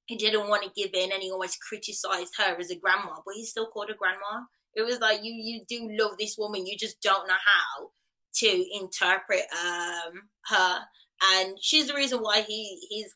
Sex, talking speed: female, 205 wpm